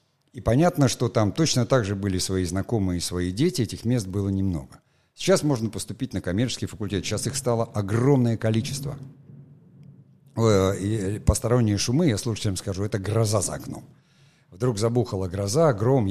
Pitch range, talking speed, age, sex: 95-130 Hz, 155 wpm, 60-79, male